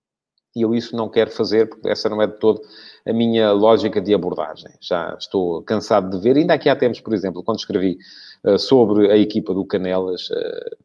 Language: English